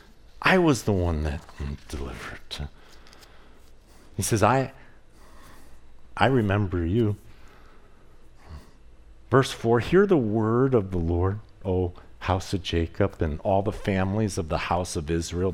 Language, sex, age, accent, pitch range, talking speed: English, male, 50-69, American, 95-135 Hz, 125 wpm